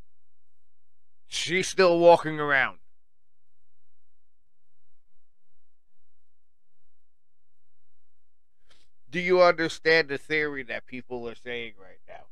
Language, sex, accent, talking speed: English, male, American, 75 wpm